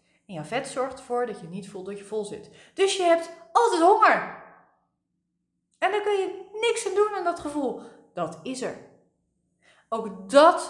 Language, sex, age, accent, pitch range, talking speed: Dutch, female, 20-39, Dutch, 195-250 Hz, 185 wpm